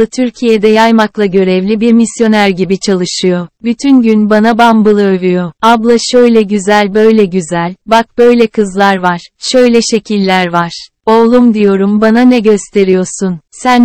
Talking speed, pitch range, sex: 130 wpm, 195-230 Hz, female